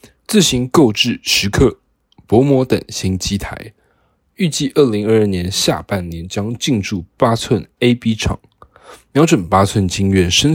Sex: male